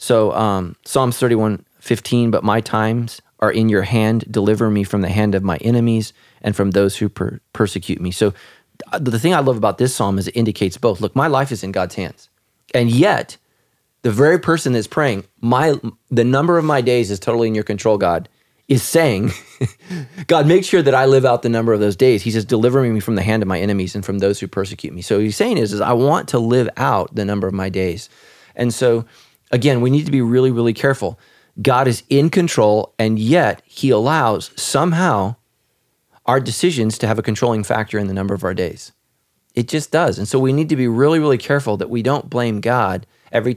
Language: English